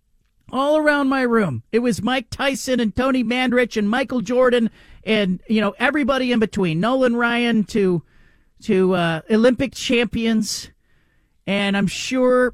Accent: American